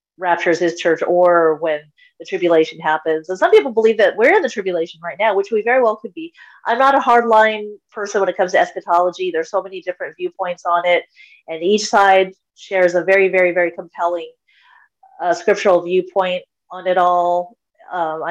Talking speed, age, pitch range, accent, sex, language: 190 wpm, 30-49, 175-235 Hz, American, female, English